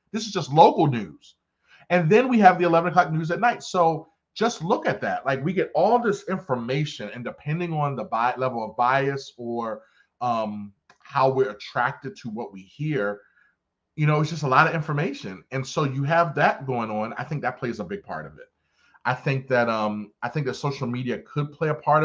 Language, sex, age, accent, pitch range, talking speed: English, male, 30-49, American, 125-170 Hz, 215 wpm